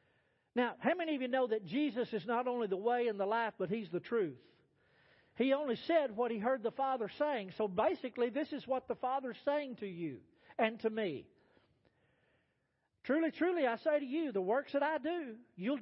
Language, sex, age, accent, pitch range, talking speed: English, male, 50-69, American, 240-300 Hz, 210 wpm